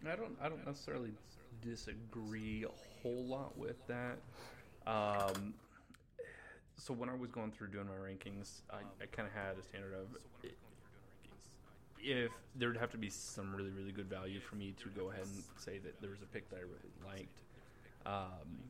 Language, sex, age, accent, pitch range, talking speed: English, male, 20-39, American, 95-115 Hz, 185 wpm